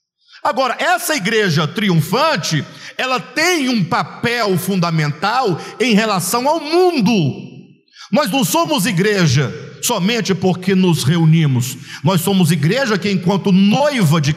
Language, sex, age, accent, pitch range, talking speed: Portuguese, male, 50-69, Brazilian, 170-250 Hz, 115 wpm